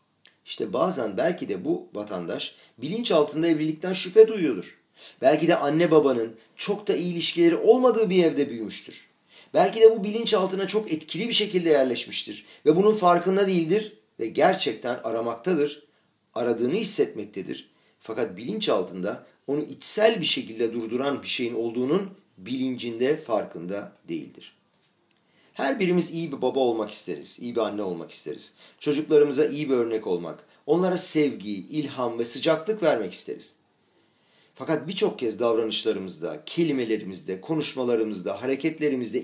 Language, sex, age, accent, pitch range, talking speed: Turkish, male, 40-59, native, 125-185 Hz, 130 wpm